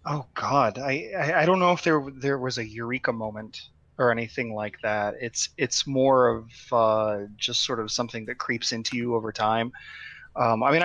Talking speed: 200 wpm